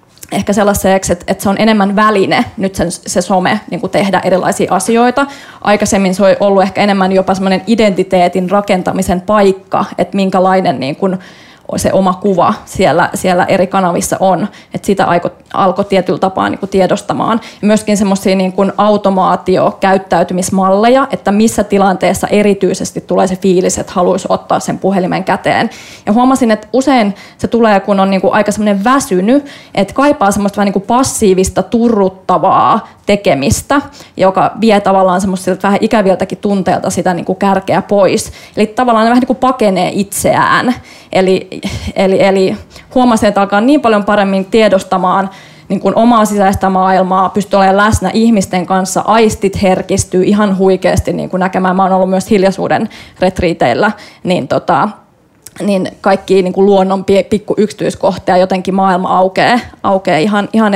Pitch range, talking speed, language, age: 185-210 Hz, 135 wpm, Finnish, 20-39